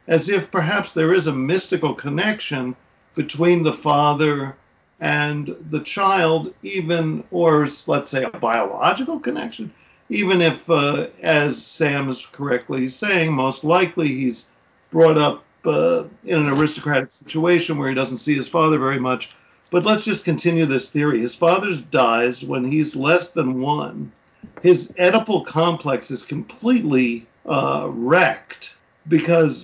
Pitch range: 135-175 Hz